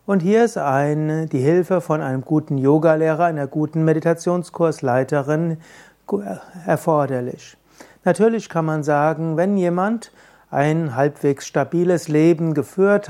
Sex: male